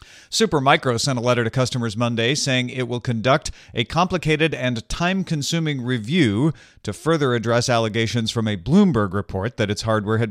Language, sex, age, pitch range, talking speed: English, male, 40-59, 105-140 Hz, 165 wpm